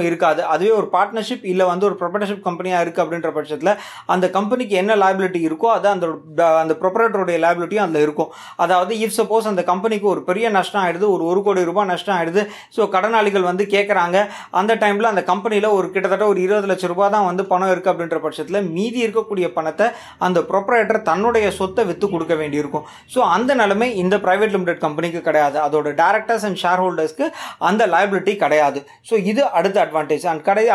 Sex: male